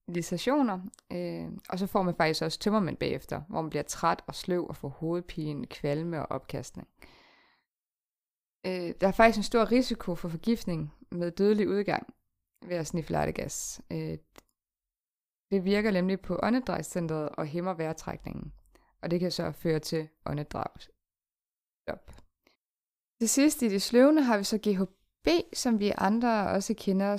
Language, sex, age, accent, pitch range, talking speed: Danish, female, 20-39, native, 170-225 Hz, 145 wpm